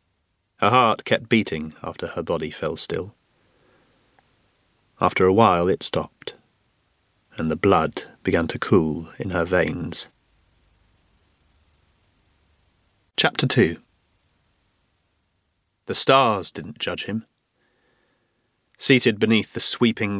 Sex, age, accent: male, 30-49, British